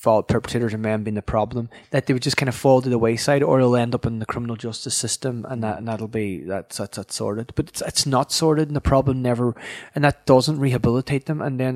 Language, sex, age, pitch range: English, male, 20-39, 120-145 Hz